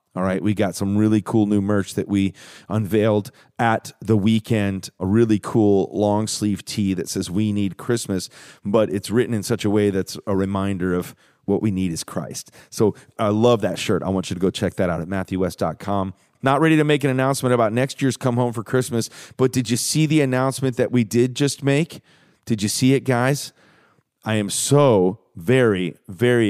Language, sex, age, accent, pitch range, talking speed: English, male, 30-49, American, 100-125 Hz, 205 wpm